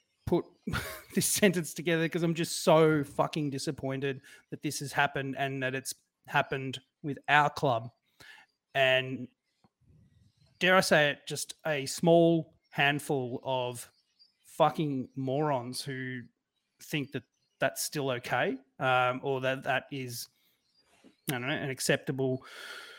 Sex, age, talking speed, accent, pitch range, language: male, 30-49, 130 wpm, Australian, 135-165 Hz, English